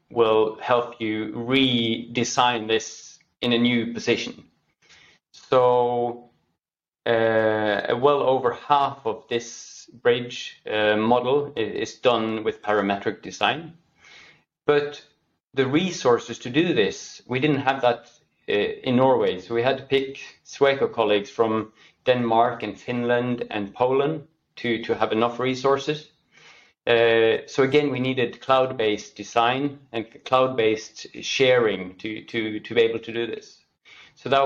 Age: 30-49